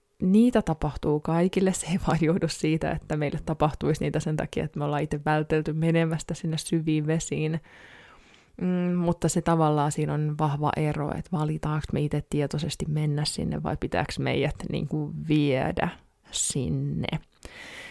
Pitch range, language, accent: 150-170 Hz, Finnish, native